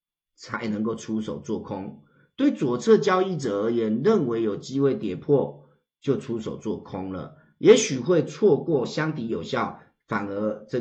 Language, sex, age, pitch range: Chinese, male, 30-49, 105-175 Hz